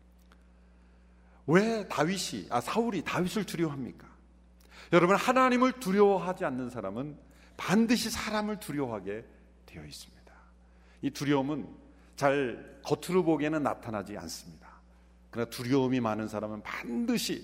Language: Korean